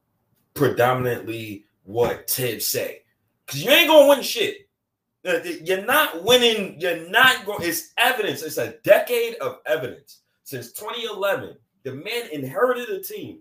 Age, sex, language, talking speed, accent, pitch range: 30-49, male, English, 140 wpm, American, 130-205 Hz